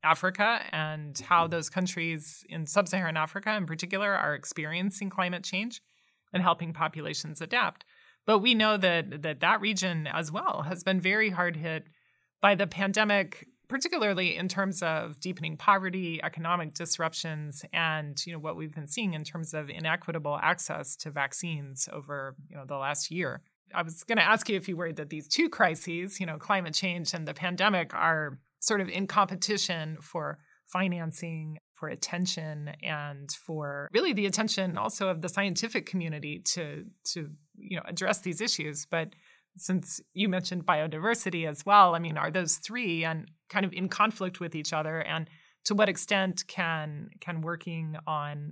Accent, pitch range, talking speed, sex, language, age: American, 155-195 Hz, 170 wpm, male, English, 30-49